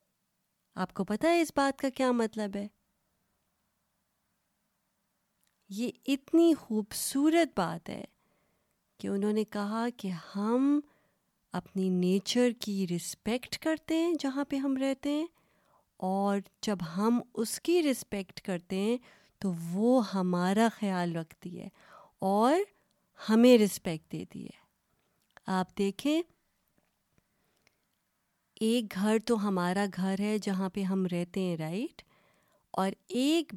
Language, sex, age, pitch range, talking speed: Urdu, female, 20-39, 190-265 Hz, 120 wpm